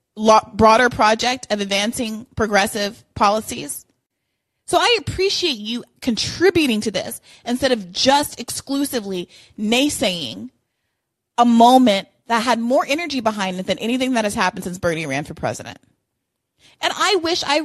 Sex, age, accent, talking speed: female, 30-49, American, 135 wpm